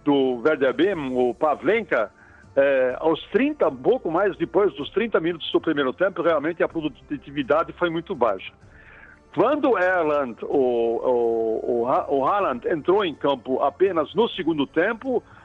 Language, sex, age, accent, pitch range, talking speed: Portuguese, male, 60-79, Brazilian, 155-225 Hz, 155 wpm